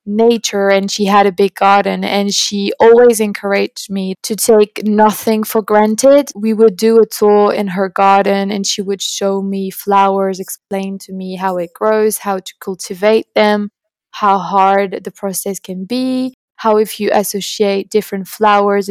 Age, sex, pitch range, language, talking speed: 20-39, female, 200-220 Hz, English, 170 wpm